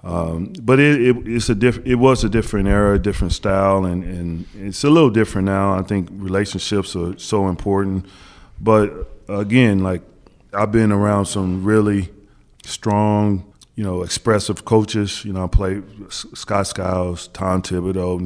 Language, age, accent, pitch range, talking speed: English, 30-49, American, 95-115 Hz, 160 wpm